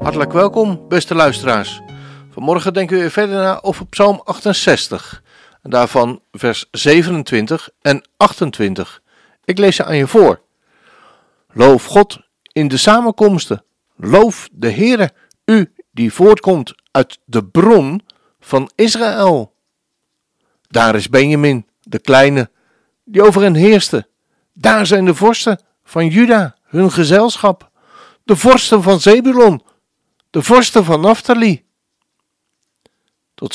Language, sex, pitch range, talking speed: Dutch, male, 150-210 Hz, 120 wpm